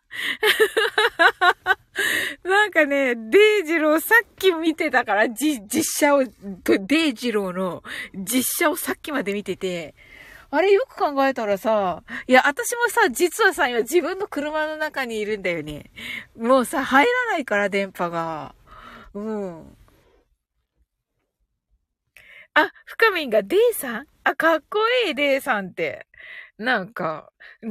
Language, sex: Japanese, female